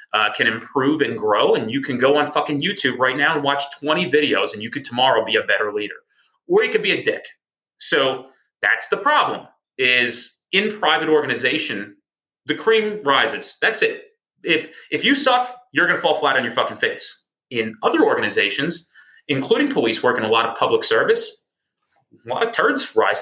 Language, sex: English, male